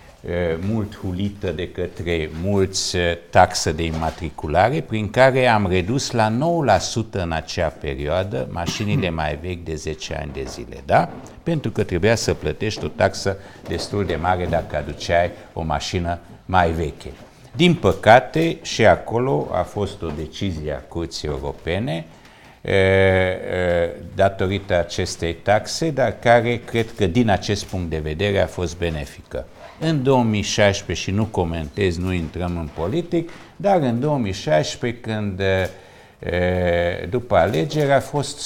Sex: male